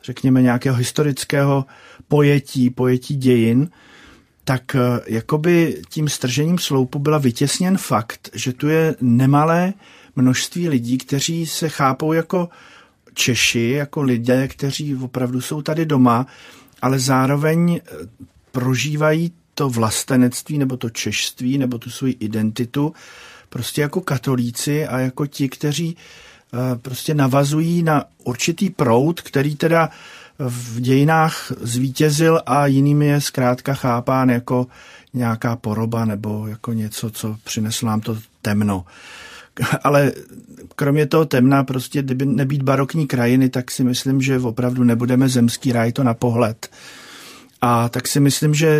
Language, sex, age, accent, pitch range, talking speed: Czech, male, 50-69, native, 125-150 Hz, 125 wpm